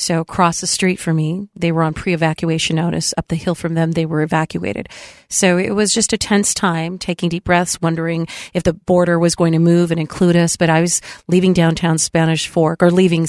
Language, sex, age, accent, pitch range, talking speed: English, female, 40-59, American, 165-185 Hz, 220 wpm